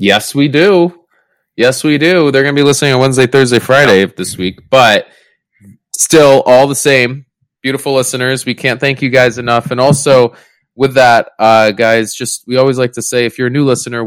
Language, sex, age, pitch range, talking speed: English, male, 20-39, 100-130 Hz, 200 wpm